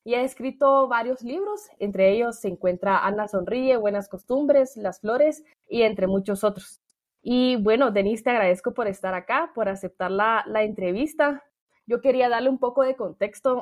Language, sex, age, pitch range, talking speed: Spanish, female, 20-39, 195-245 Hz, 170 wpm